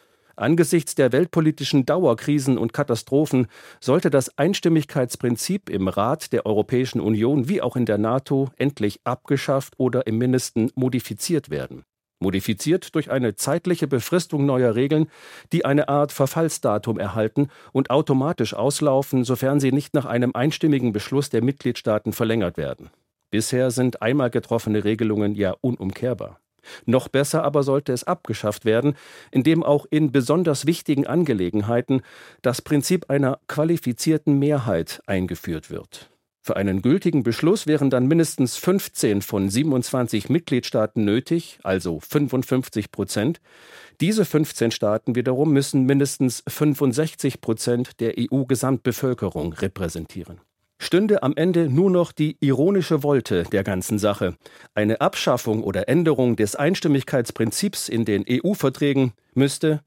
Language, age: German, 50-69